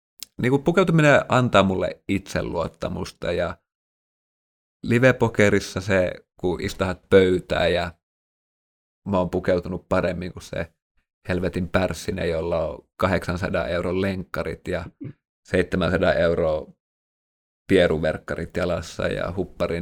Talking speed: 100 wpm